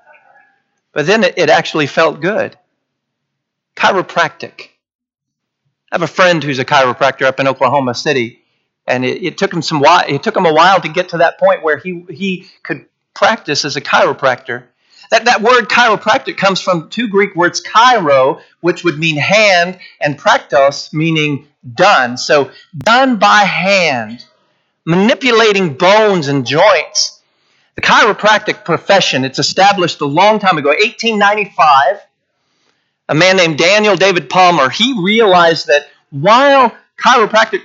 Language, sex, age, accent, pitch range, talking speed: English, male, 50-69, American, 150-205 Hz, 140 wpm